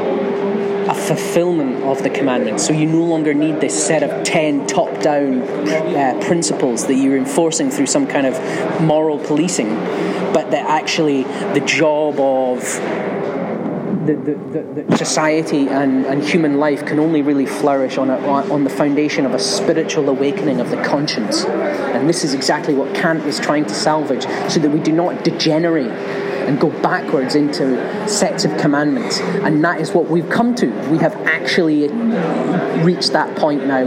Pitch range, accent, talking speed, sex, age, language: 140-170 Hz, British, 165 wpm, male, 30-49, English